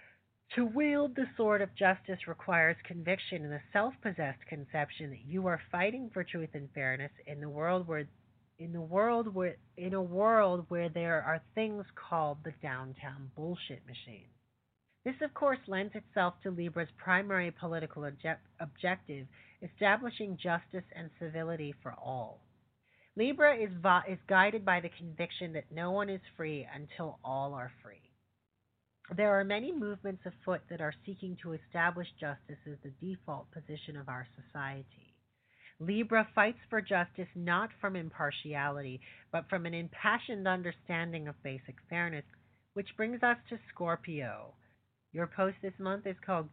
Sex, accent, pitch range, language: female, American, 145-190 Hz, English